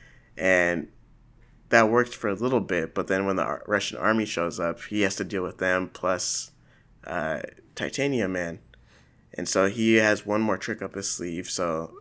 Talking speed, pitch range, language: 180 wpm, 85-105 Hz, English